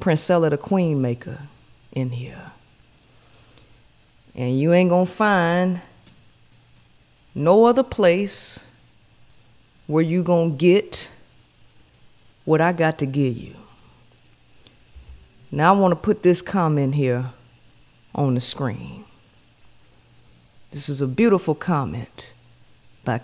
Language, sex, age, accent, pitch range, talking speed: English, female, 40-59, American, 125-185 Hz, 110 wpm